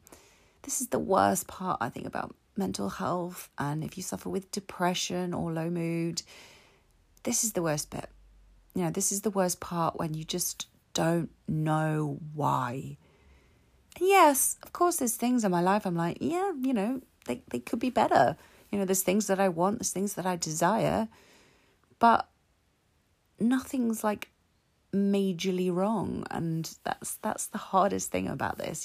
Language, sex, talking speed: English, female, 165 wpm